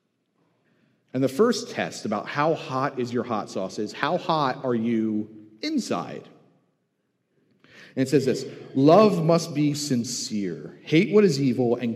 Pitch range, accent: 120-185 Hz, American